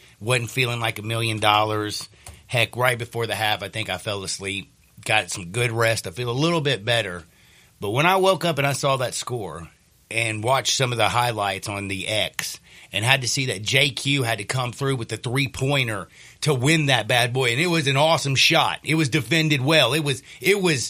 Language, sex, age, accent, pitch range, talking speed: English, male, 40-59, American, 105-135 Hz, 215 wpm